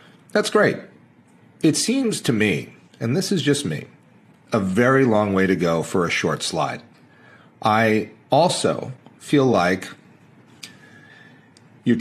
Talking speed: 130 wpm